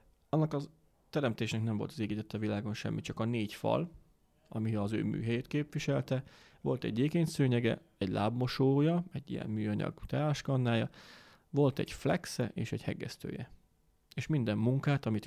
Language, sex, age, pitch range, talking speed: Hungarian, male, 30-49, 110-135 Hz, 150 wpm